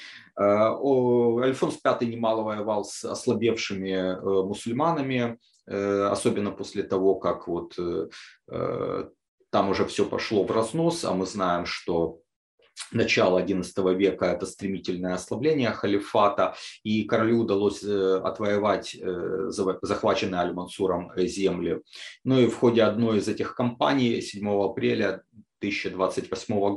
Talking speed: 105 wpm